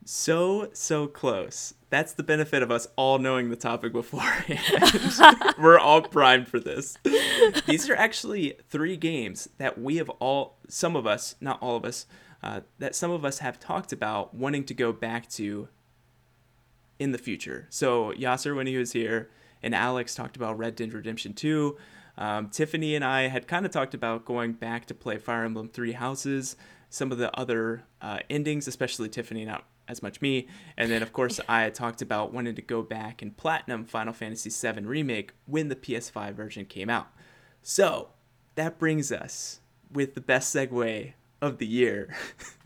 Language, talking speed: English, 180 wpm